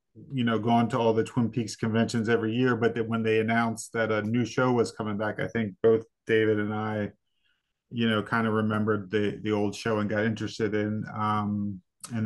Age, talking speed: 30-49, 215 wpm